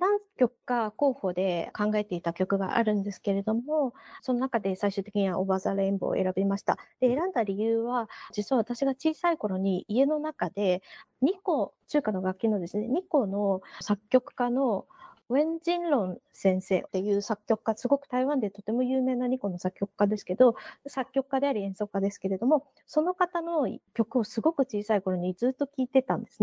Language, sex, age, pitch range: Japanese, female, 20-39, 195-270 Hz